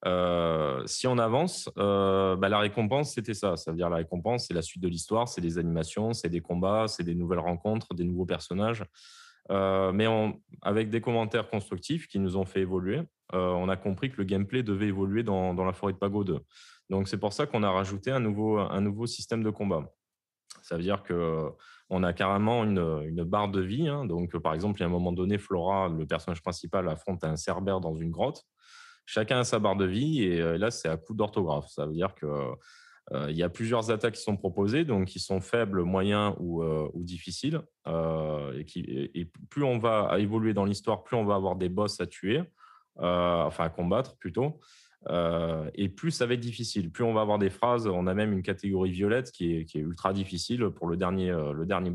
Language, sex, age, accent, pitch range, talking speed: French, male, 20-39, French, 85-110 Hz, 225 wpm